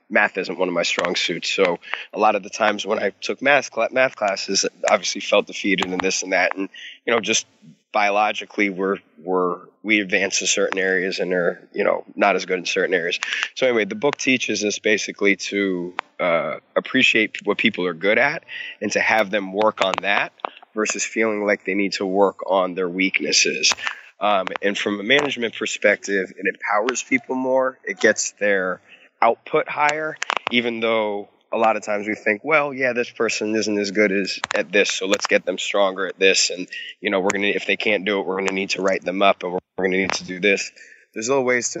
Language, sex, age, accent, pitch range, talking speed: English, male, 20-39, American, 100-120 Hz, 215 wpm